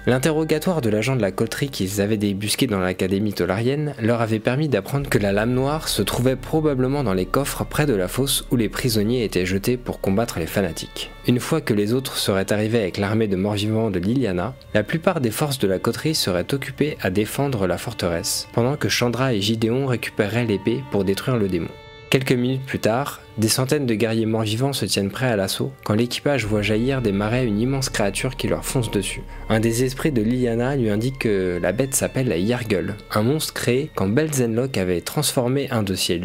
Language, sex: French, male